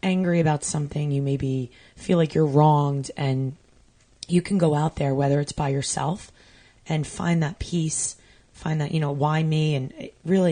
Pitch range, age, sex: 140-160 Hz, 20-39, female